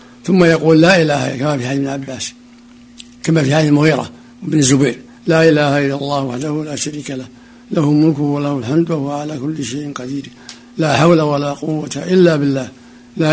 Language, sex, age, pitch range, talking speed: Arabic, male, 60-79, 145-175 Hz, 180 wpm